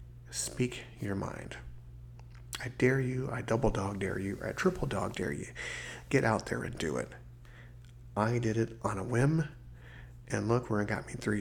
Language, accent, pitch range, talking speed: English, American, 105-125 Hz, 185 wpm